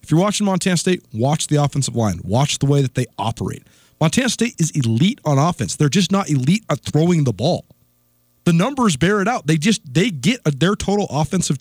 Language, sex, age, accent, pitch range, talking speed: English, male, 30-49, American, 130-170 Hz, 215 wpm